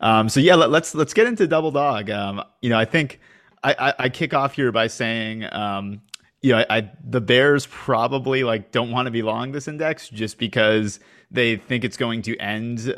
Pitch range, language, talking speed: 105-125 Hz, English, 215 wpm